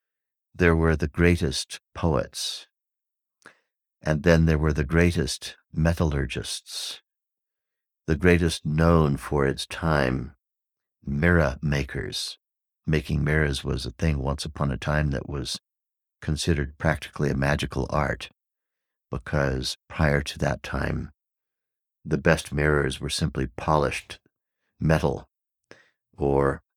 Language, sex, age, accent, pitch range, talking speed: English, male, 60-79, American, 70-80 Hz, 110 wpm